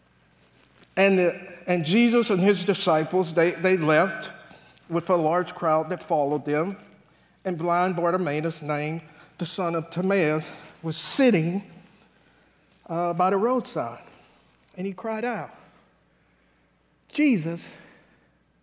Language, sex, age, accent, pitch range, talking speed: English, male, 50-69, American, 150-220 Hz, 115 wpm